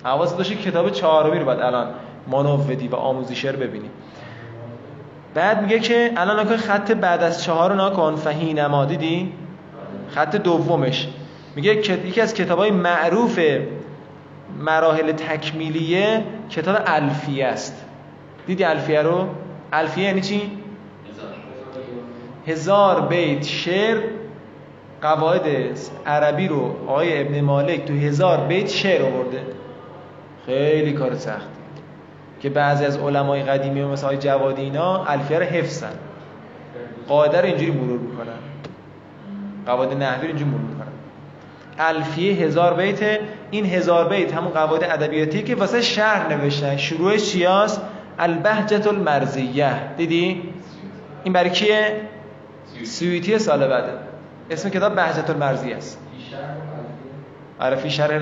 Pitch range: 140-185 Hz